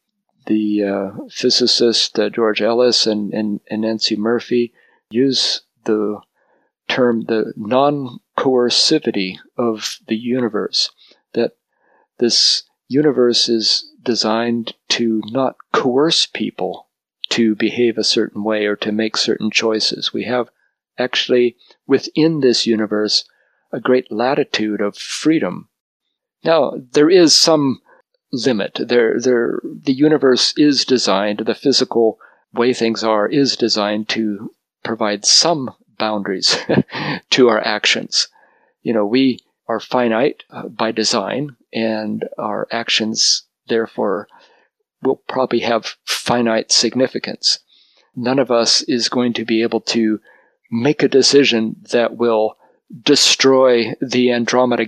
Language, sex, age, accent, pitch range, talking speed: English, male, 50-69, American, 110-130 Hz, 120 wpm